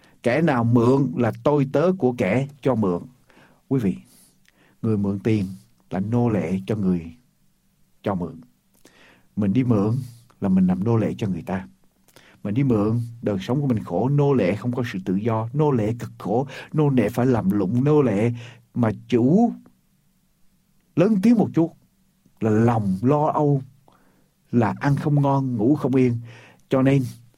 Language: Ukrainian